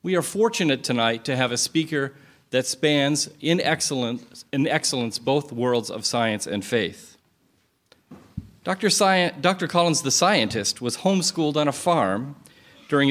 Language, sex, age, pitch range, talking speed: English, male, 40-59, 125-155 Hz, 135 wpm